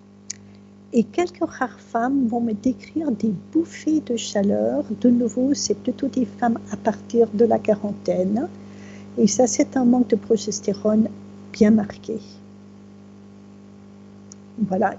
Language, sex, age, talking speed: French, female, 50-69, 130 wpm